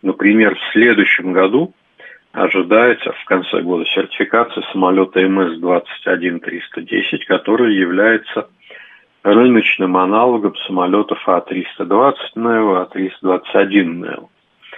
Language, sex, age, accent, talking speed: Russian, male, 40-59, native, 75 wpm